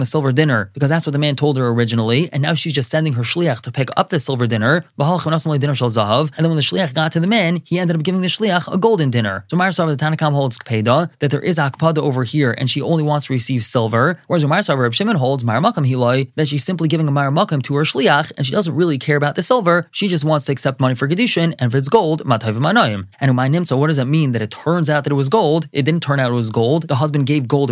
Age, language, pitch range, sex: 20-39, English, 130-165 Hz, male